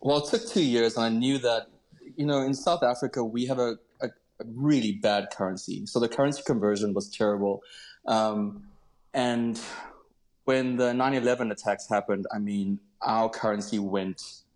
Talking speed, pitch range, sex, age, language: 160 wpm, 105-125 Hz, male, 20-39, English